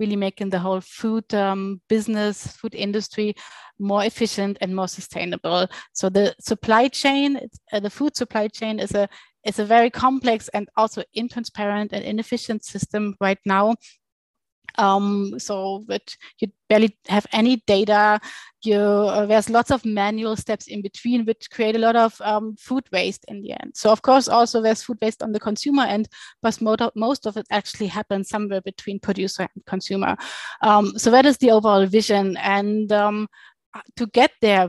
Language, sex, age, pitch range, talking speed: English, female, 30-49, 200-230 Hz, 170 wpm